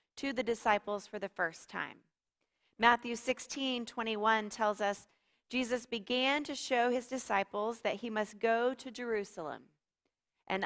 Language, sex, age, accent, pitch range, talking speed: English, female, 30-49, American, 195-245 Hz, 135 wpm